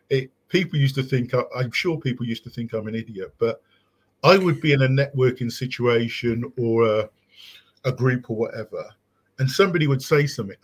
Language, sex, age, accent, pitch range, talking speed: English, male, 40-59, British, 125-160 Hz, 180 wpm